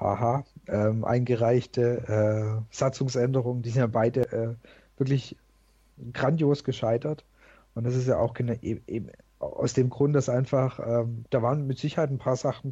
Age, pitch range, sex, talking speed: 50-69, 120-140 Hz, male, 145 wpm